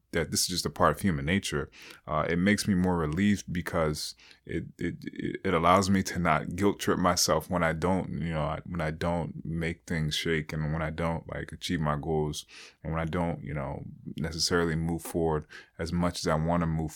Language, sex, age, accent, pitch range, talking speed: English, male, 20-39, American, 80-90 Hz, 215 wpm